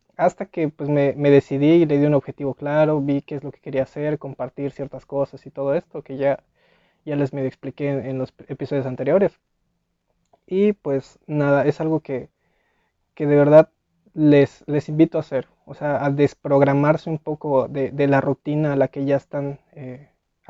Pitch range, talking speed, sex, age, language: 140-155 Hz, 190 wpm, male, 20-39, Spanish